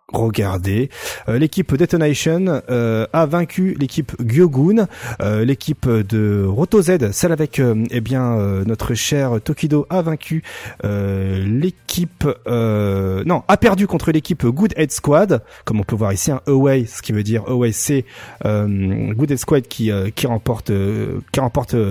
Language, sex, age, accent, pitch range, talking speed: French, male, 30-49, French, 110-165 Hz, 165 wpm